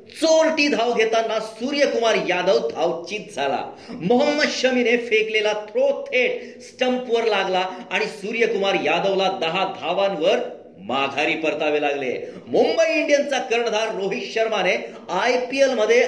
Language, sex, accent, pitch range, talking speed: Marathi, male, native, 185-245 Hz, 100 wpm